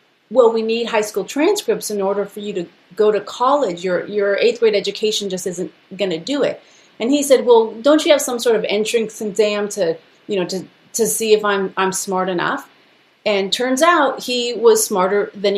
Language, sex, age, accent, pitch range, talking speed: English, female, 30-49, American, 190-230 Hz, 210 wpm